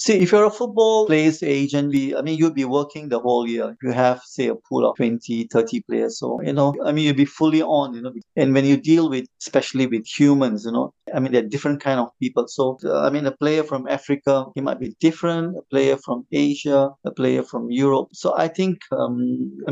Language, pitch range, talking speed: English, 125-170 Hz, 230 wpm